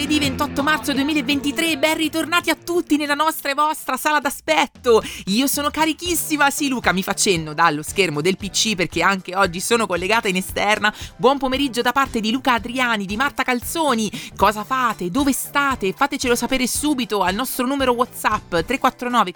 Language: Italian